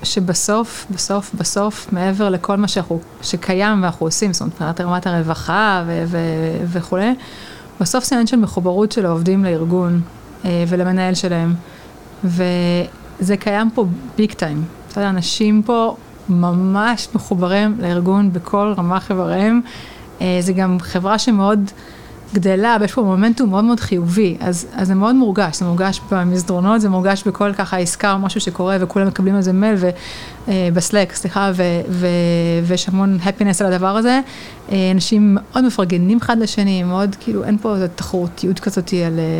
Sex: female